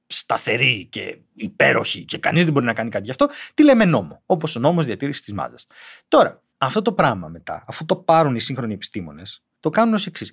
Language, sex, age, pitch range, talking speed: Greek, male, 30-49, 150-225 Hz, 210 wpm